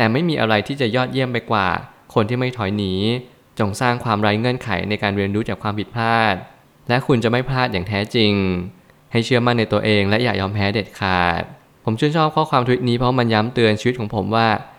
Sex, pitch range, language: male, 100-120 Hz, Thai